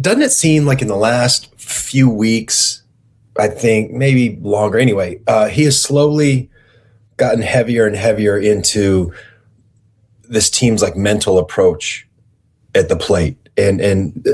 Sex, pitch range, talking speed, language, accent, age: male, 100-125 Hz, 140 wpm, English, American, 30-49